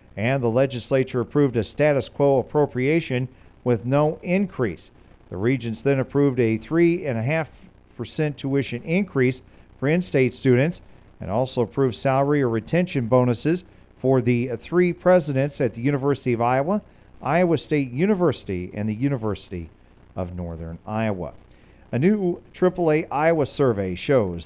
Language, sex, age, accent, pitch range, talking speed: English, male, 40-59, American, 120-150 Hz, 130 wpm